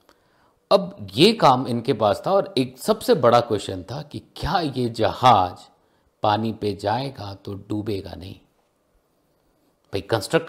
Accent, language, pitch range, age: native, Hindi, 110-175 Hz, 50-69